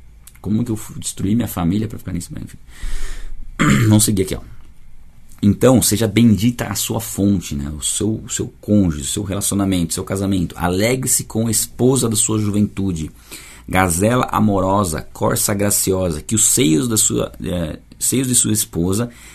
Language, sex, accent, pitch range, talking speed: Portuguese, male, Brazilian, 85-110 Hz, 160 wpm